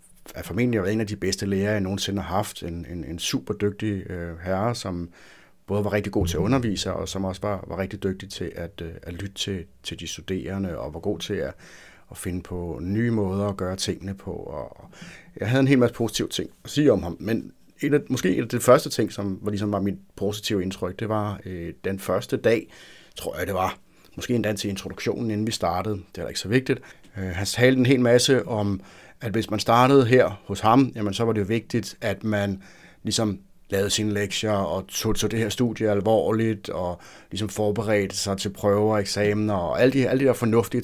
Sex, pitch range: male, 95-115 Hz